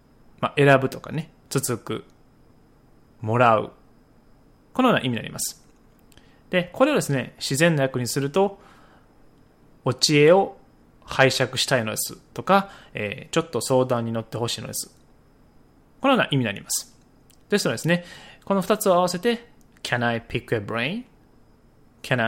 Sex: male